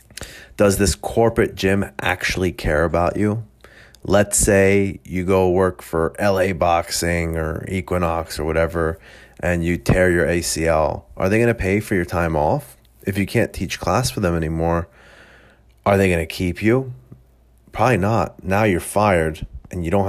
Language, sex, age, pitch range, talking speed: English, male, 30-49, 80-100 Hz, 165 wpm